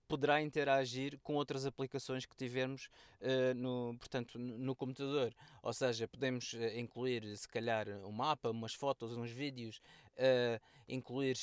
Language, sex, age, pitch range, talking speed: Portuguese, male, 20-39, 120-140 Hz, 140 wpm